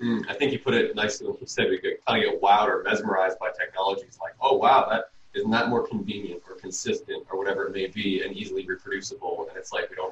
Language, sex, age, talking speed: English, male, 20-39, 250 wpm